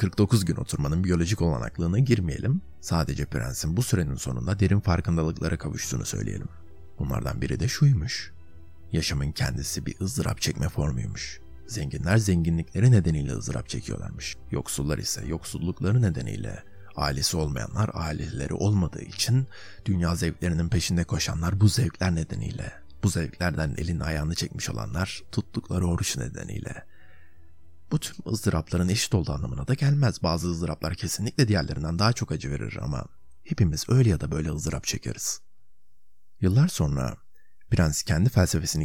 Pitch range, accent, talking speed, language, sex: 80-100 Hz, native, 130 wpm, Turkish, male